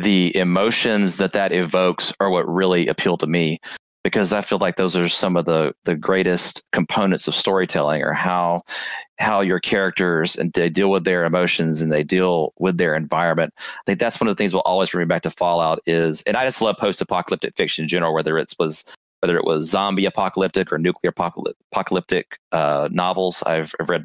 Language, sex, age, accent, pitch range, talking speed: English, male, 30-49, American, 80-95 Hz, 200 wpm